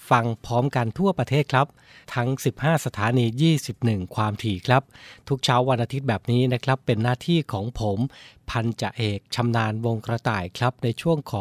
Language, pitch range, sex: Thai, 120-145 Hz, male